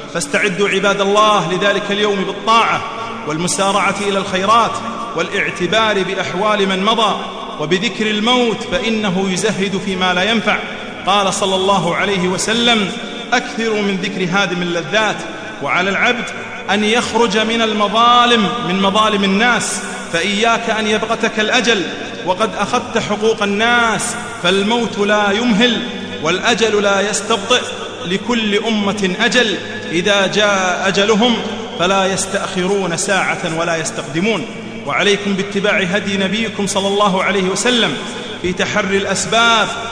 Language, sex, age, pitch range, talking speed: Arabic, male, 40-59, 185-225 Hz, 115 wpm